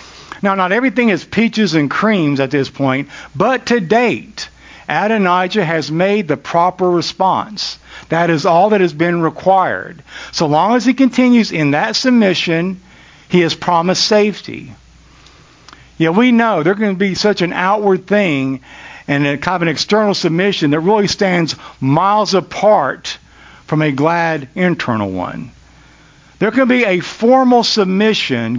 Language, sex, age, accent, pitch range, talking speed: English, male, 50-69, American, 150-205 Hz, 145 wpm